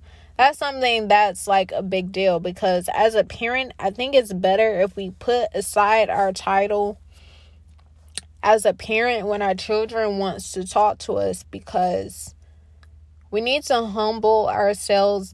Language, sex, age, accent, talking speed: English, female, 20-39, American, 150 wpm